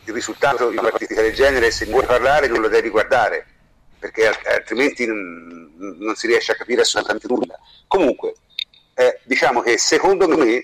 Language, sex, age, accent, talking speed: Italian, male, 50-69, native, 165 wpm